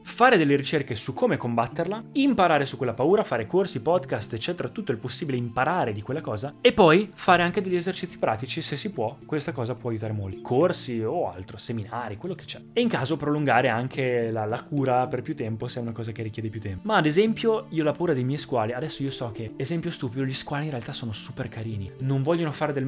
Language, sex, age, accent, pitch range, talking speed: Italian, male, 20-39, native, 120-150 Hz, 235 wpm